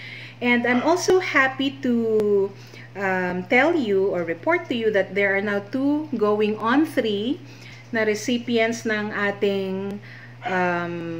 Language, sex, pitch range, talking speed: Filipino, female, 185-225 Hz, 135 wpm